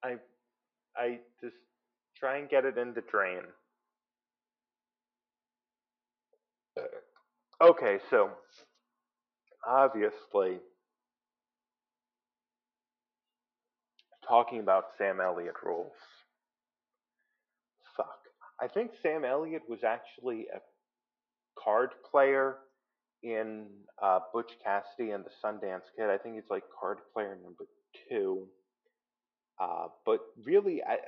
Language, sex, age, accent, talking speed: English, male, 30-49, American, 90 wpm